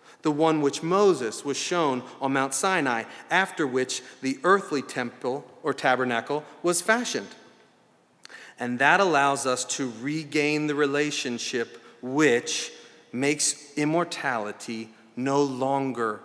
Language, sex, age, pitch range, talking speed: English, male, 40-59, 140-190 Hz, 115 wpm